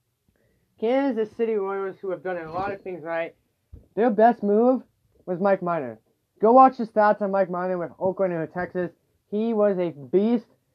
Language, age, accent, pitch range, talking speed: English, 20-39, American, 170-205 Hz, 180 wpm